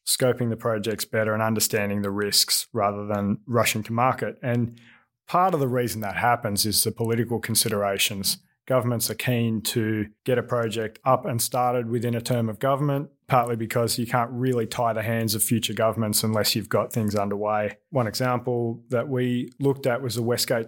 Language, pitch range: English, 110-125 Hz